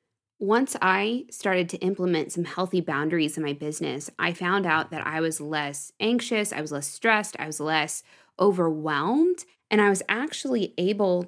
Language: English